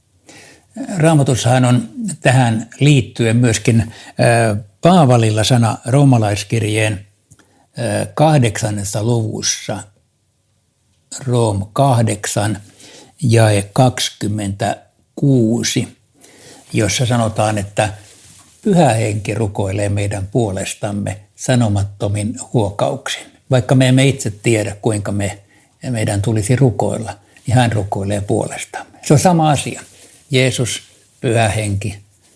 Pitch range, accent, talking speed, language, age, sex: 105-130 Hz, native, 85 wpm, Finnish, 60-79, male